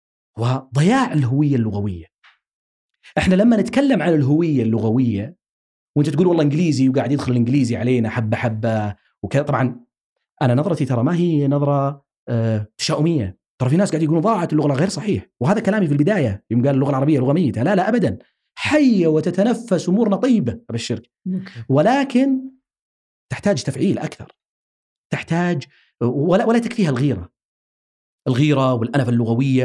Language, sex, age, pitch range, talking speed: Arabic, male, 40-59, 115-180 Hz, 125 wpm